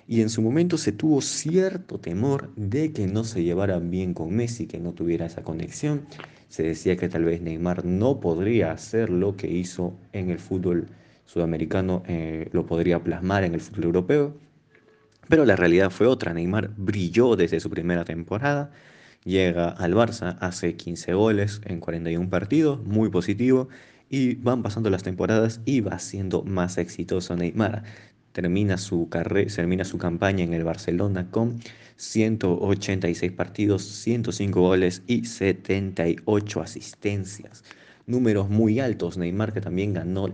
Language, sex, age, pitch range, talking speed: Spanish, male, 30-49, 85-115 Hz, 150 wpm